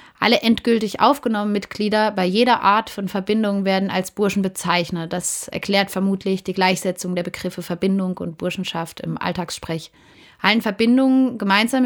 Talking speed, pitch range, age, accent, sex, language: 140 wpm, 185-220 Hz, 30-49, German, female, German